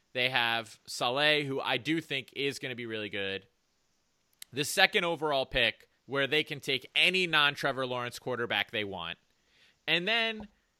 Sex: male